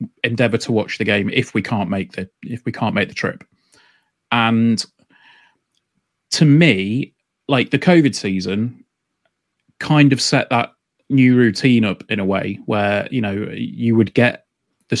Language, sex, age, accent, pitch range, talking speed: English, male, 30-49, British, 100-125 Hz, 160 wpm